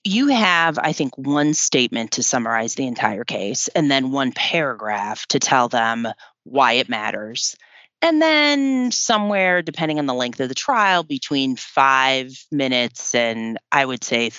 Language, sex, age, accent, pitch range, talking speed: English, female, 30-49, American, 125-215 Hz, 160 wpm